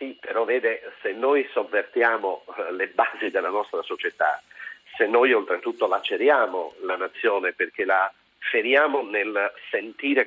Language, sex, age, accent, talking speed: Italian, male, 50-69, native, 130 wpm